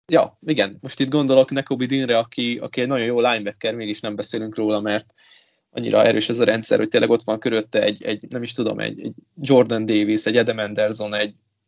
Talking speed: 210 wpm